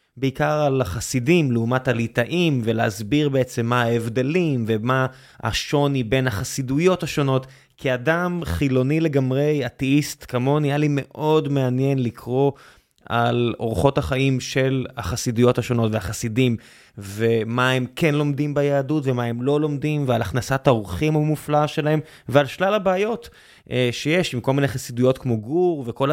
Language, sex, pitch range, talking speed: Hebrew, male, 125-150 Hz, 130 wpm